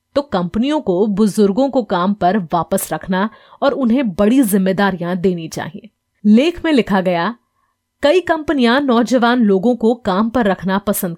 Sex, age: female, 30-49